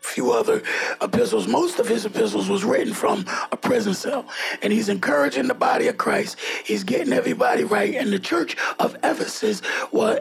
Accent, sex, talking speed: American, male, 175 wpm